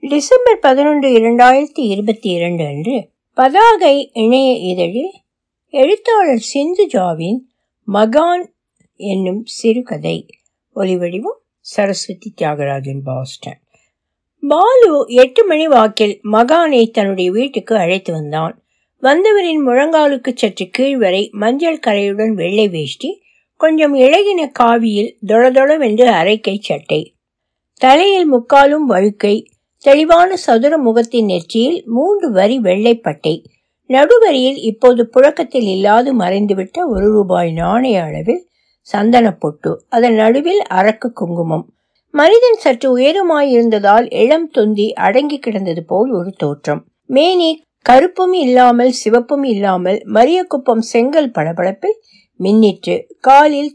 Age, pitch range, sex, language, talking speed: 60-79, 205-290 Hz, female, Tamil, 55 wpm